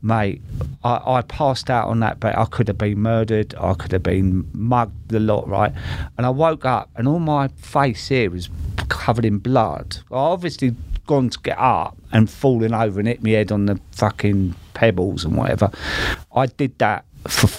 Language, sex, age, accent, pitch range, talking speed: English, male, 40-59, British, 100-130 Hz, 195 wpm